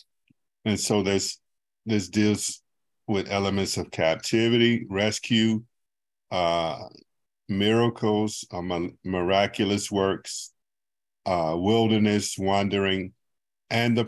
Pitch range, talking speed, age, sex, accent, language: 95-110 Hz, 85 wpm, 50-69, male, American, English